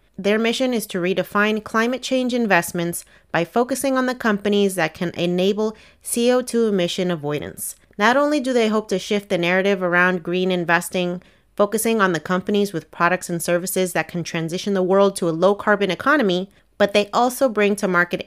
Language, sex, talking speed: English, female, 175 wpm